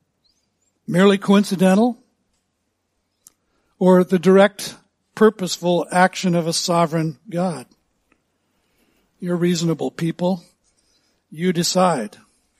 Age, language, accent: 60-79, English, American